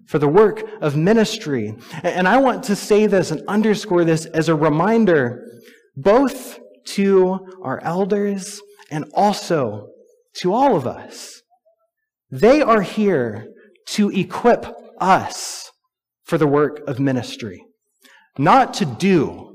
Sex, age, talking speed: male, 30-49, 125 wpm